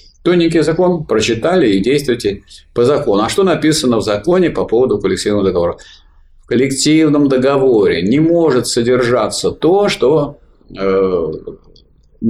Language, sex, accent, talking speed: Russian, male, native, 120 wpm